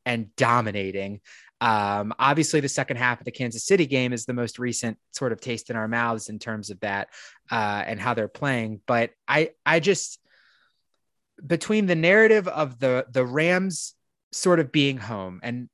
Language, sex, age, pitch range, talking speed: English, male, 20-39, 120-155 Hz, 180 wpm